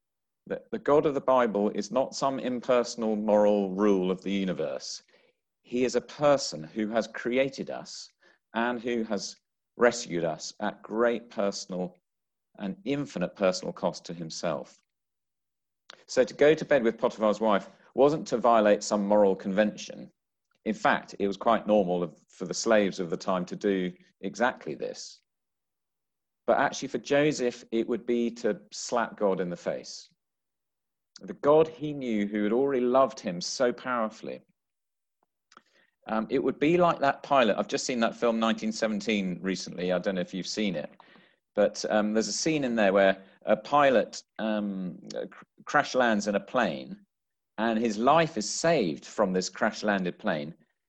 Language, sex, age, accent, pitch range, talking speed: English, male, 40-59, British, 100-135 Hz, 165 wpm